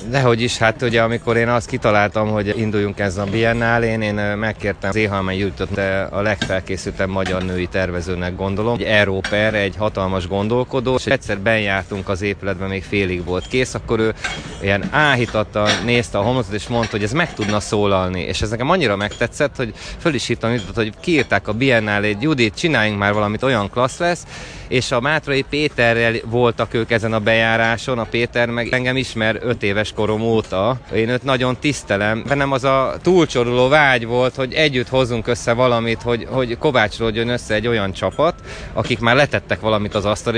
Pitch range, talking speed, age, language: 105-125 Hz, 175 wpm, 30-49, Hungarian